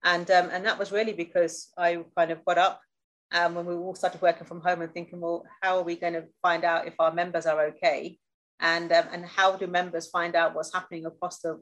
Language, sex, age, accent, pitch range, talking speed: English, female, 30-49, British, 165-185 Hz, 245 wpm